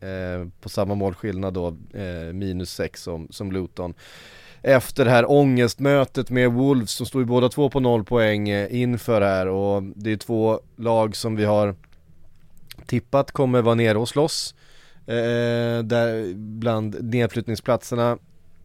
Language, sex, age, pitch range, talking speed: English, male, 30-49, 100-120 Hz, 150 wpm